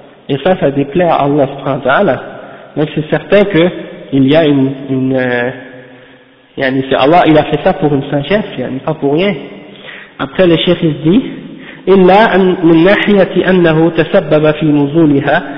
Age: 50-69